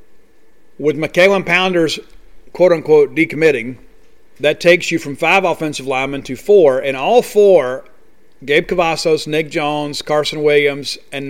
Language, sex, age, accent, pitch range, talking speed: English, male, 50-69, American, 140-165 Hz, 125 wpm